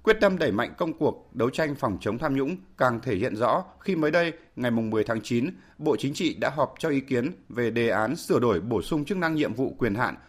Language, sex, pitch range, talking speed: Vietnamese, male, 120-165 Hz, 255 wpm